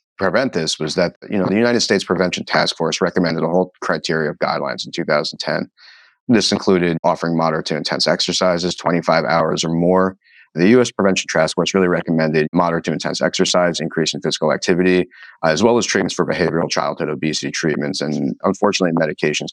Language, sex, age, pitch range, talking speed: English, male, 30-49, 75-90 Hz, 175 wpm